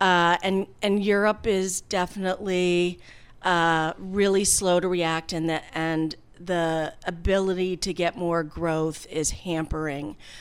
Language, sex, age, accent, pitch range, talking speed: English, female, 40-59, American, 165-190 Hz, 120 wpm